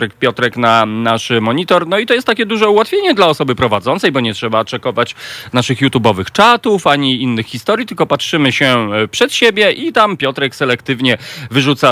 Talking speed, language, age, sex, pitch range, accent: 170 wpm, Polish, 40-59, male, 130-175 Hz, native